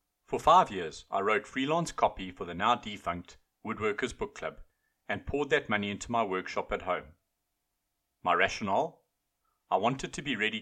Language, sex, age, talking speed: English, male, 40-59, 165 wpm